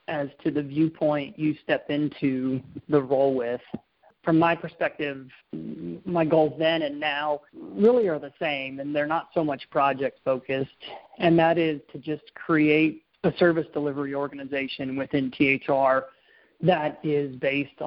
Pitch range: 135-155 Hz